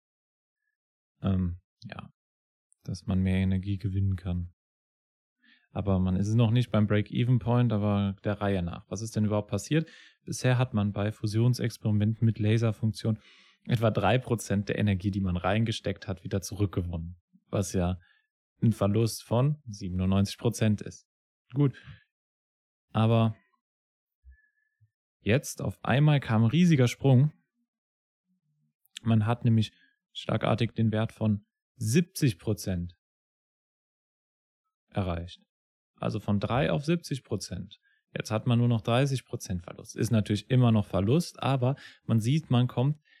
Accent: German